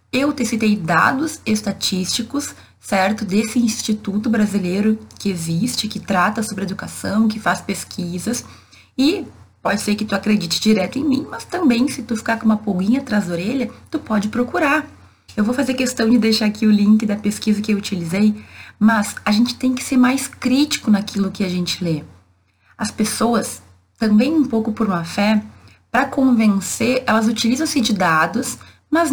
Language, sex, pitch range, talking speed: Portuguese, female, 195-240 Hz, 170 wpm